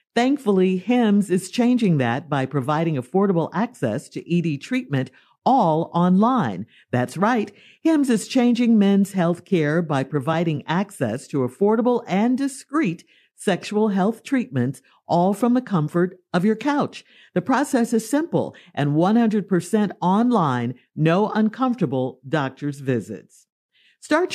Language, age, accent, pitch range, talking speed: English, 50-69, American, 150-225 Hz, 125 wpm